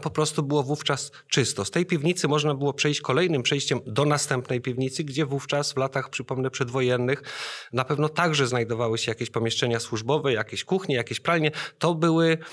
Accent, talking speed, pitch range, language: native, 170 wpm, 130-150 Hz, Polish